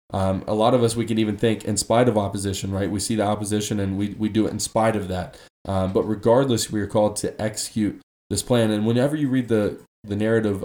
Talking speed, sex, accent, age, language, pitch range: 250 wpm, male, American, 20-39, English, 100-115 Hz